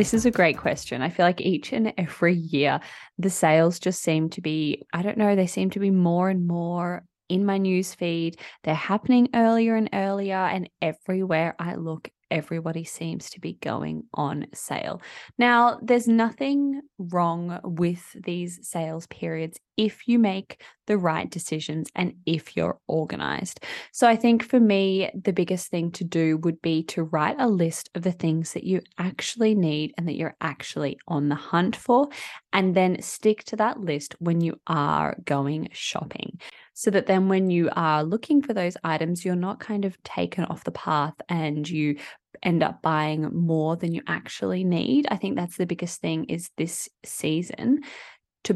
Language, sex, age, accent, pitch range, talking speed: English, female, 10-29, Australian, 165-205 Hz, 180 wpm